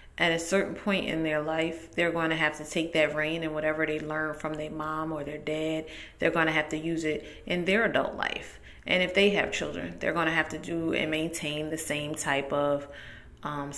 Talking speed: 235 wpm